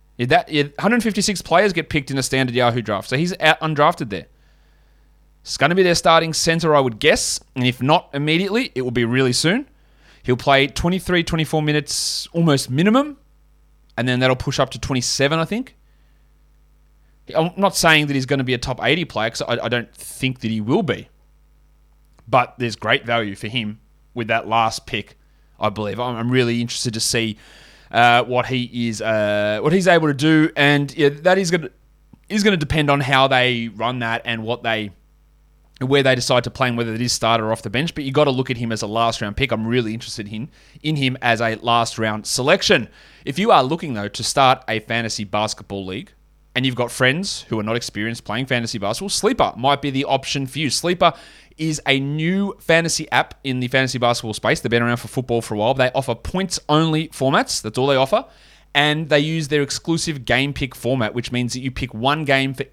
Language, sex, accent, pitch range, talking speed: English, male, Australian, 115-150 Hz, 215 wpm